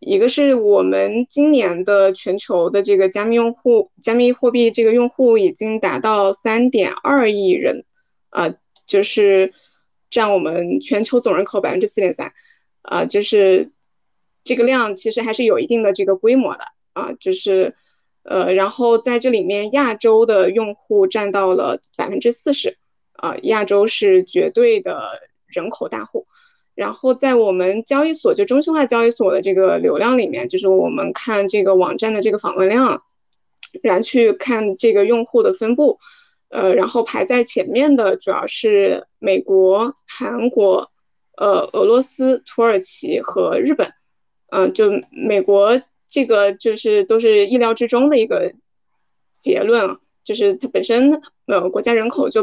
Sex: female